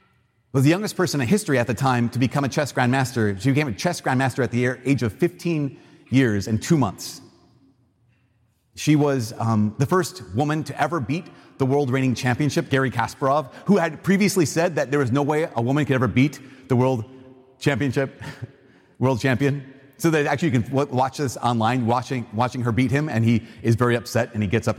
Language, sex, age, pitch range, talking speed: English, male, 30-49, 120-145 Hz, 200 wpm